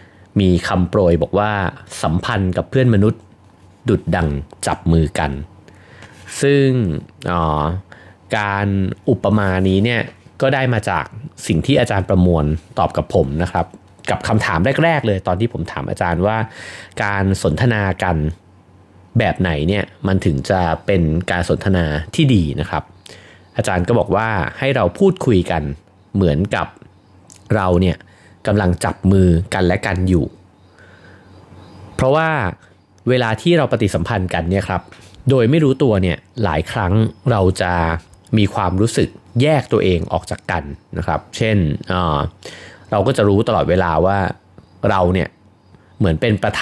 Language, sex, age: Thai, male, 30-49